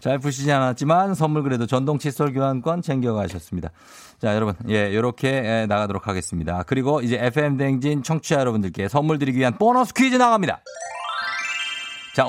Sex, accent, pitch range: male, native, 110-160 Hz